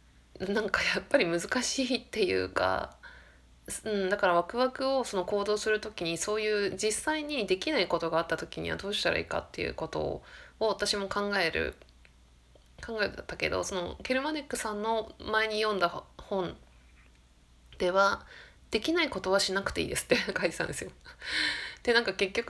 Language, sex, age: Japanese, female, 20-39